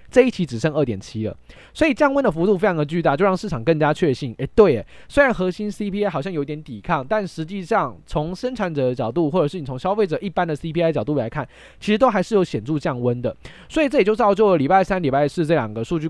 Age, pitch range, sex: 20-39, 135-200 Hz, male